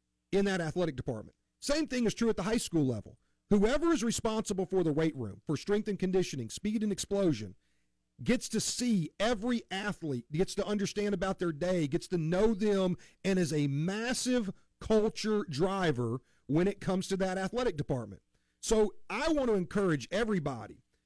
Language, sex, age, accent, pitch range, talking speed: English, male, 40-59, American, 165-225 Hz, 175 wpm